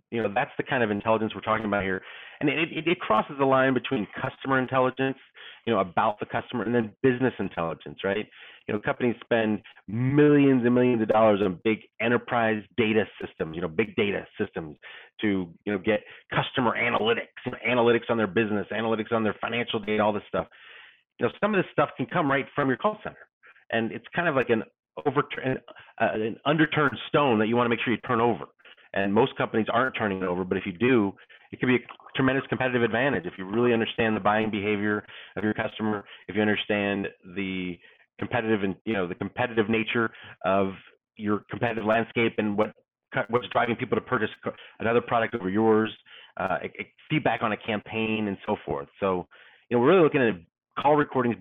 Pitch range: 105-125 Hz